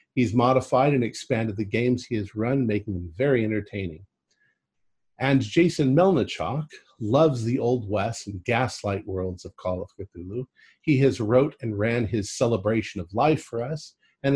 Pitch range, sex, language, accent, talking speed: 105-135 Hz, male, English, American, 165 wpm